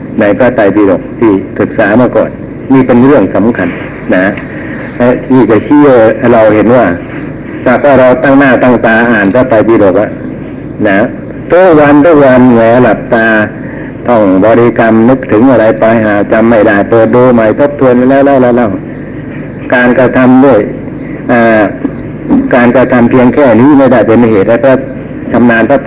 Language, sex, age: Thai, male, 60-79